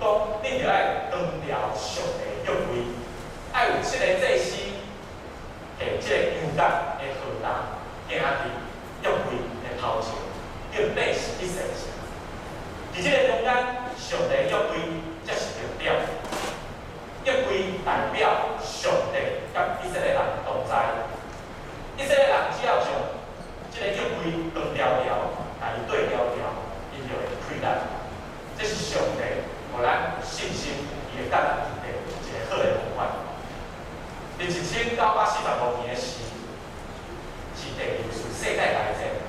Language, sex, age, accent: Chinese, male, 30-49, native